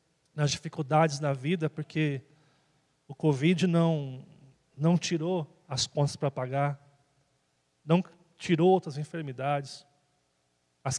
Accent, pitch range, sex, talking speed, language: Brazilian, 140-170 Hz, male, 105 wpm, Portuguese